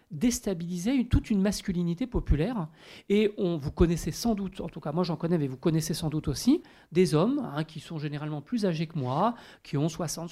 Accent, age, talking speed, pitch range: French, 40-59, 205 wpm, 170-225 Hz